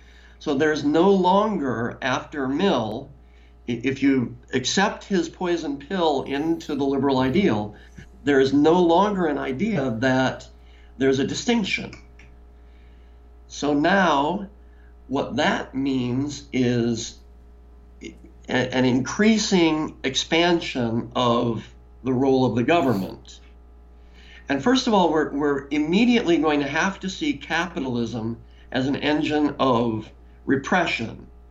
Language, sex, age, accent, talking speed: English, male, 60-79, American, 110 wpm